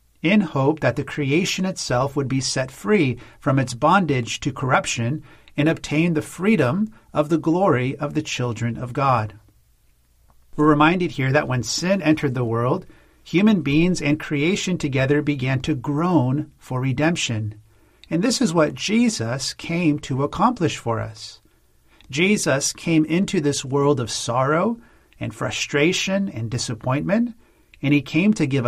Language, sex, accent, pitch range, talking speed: English, male, American, 125-160 Hz, 150 wpm